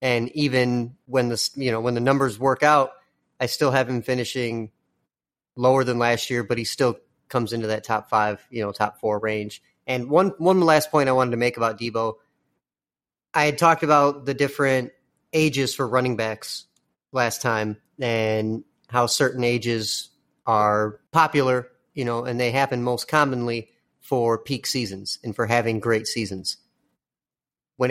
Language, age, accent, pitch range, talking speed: English, 30-49, American, 115-140 Hz, 170 wpm